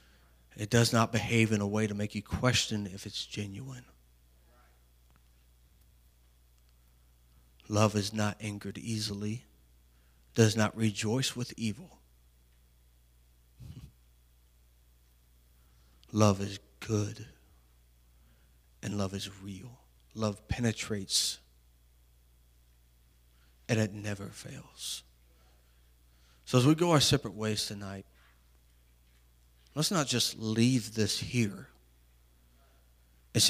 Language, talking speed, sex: English, 95 wpm, male